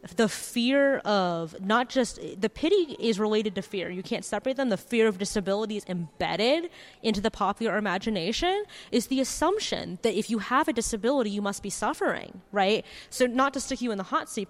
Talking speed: 195 wpm